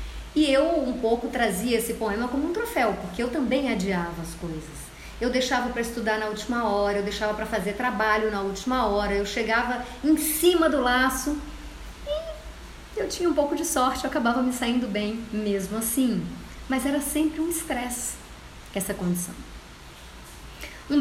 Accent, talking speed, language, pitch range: Brazilian, 170 wpm, Portuguese, 190-255 Hz